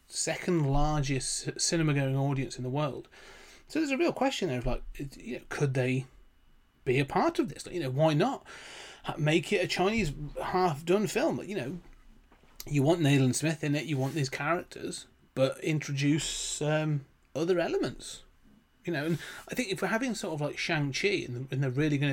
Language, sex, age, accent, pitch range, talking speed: English, male, 30-49, British, 135-170 Hz, 195 wpm